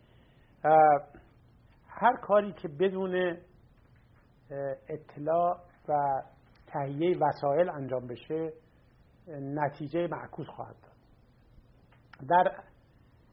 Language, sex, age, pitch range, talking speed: English, male, 50-69, 135-170 Hz, 70 wpm